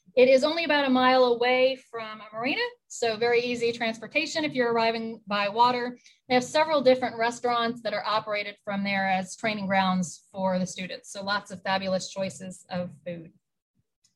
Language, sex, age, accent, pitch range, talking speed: English, female, 30-49, American, 205-270 Hz, 180 wpm